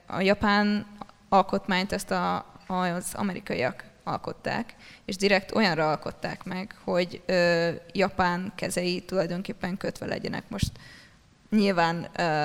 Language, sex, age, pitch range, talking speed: Hungarian, female, 20-39, 175-200 Hz, 95 wpm